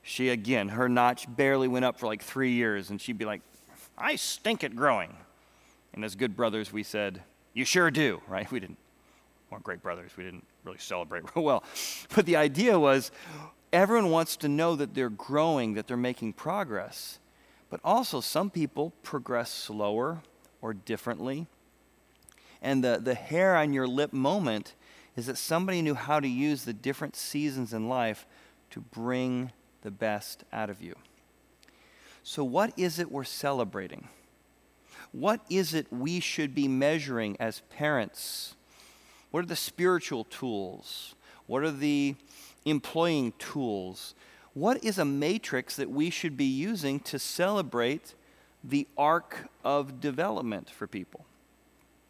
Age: 40-59